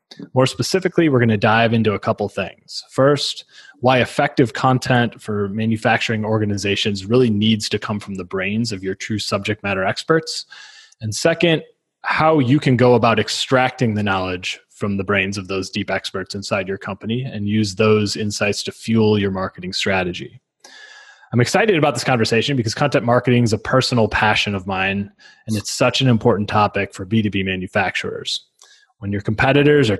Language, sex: English, male